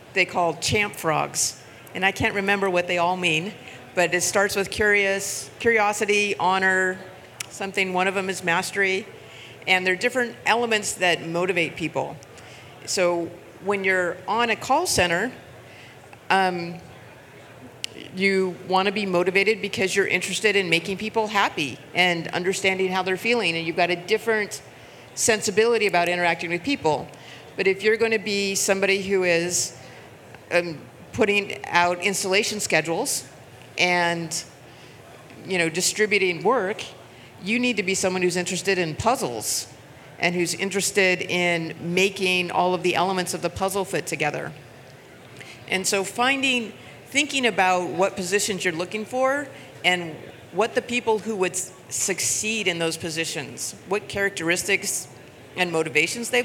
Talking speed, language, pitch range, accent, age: 145 wpm, English, 165-200 Hz, American, 50-69